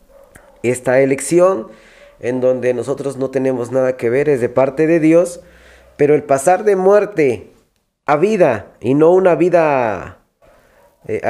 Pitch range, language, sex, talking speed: 135-170 Hz, Spanish, male, 145 wpm